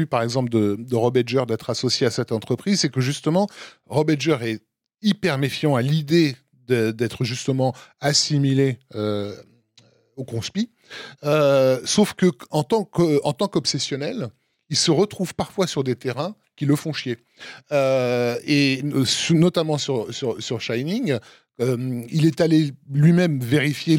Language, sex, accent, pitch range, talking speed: French, male, French, 120-150 Hz, 150 wpm